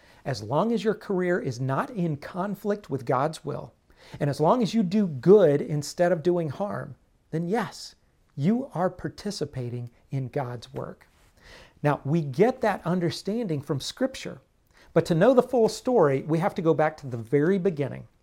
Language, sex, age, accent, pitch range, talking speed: English, male, 40-59, American, 140-185 Hz, 175 wpm